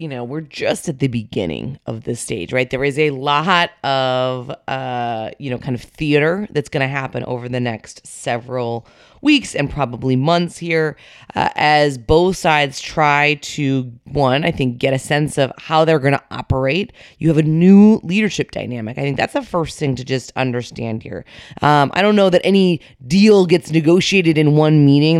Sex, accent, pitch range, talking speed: female, American, 135-180 Hz, 195 wpm